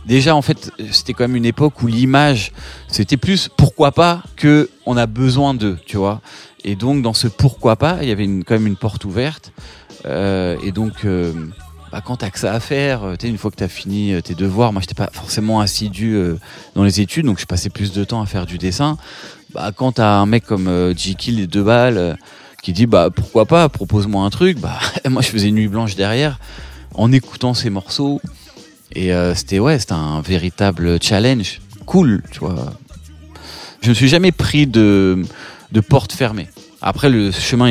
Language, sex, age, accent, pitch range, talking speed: French, male, 30-49, French, 95-130 Hz, 210 wpm